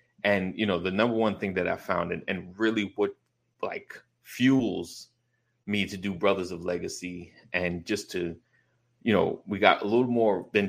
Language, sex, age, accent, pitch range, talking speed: English, male, 30-49, American, 95-115 Hz, 185 wpm